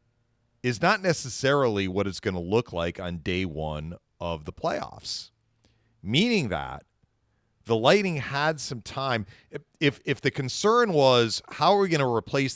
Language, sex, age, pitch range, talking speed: English, male, 40-59, 100-135 Hz, 160 wpm